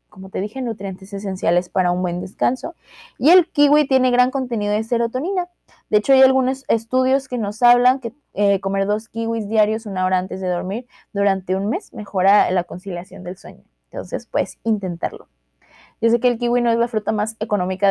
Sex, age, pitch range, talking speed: female, 20-39, 195-240 Hz, 195 wpm